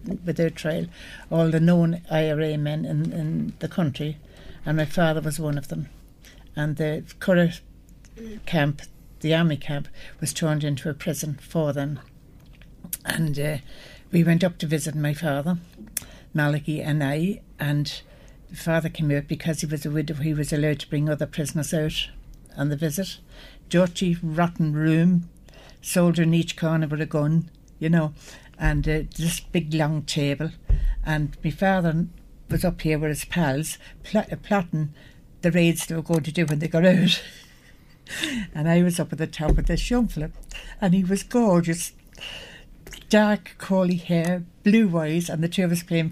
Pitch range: 150-175 Hz